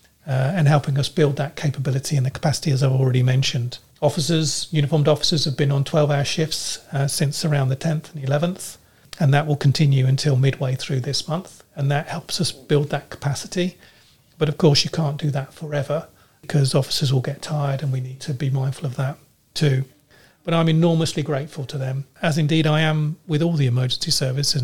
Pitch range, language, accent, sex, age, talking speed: 135-155 Hz, English, British, male, 40-59, 200 wpm